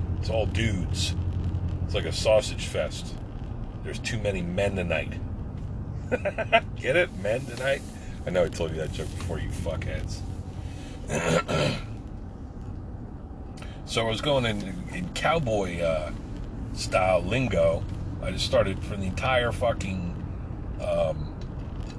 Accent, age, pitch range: American, 40-59, 90-105 Hz